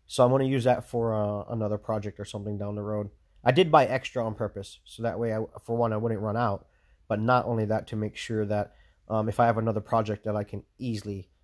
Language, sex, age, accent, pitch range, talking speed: English, male, 30-49, American, 105-125 Hz, 255 wpm